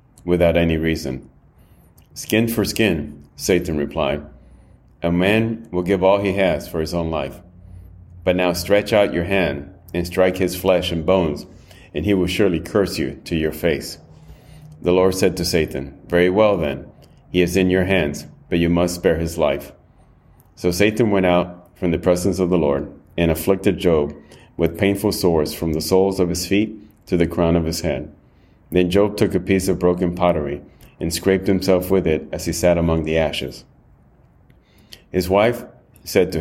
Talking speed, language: 180 wpm, English